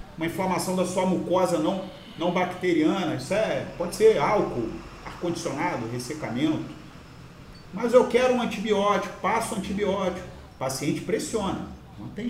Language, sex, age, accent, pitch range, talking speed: Portuguese, male, 40-59, Brazilian, 170-220 Hz, 140 wpm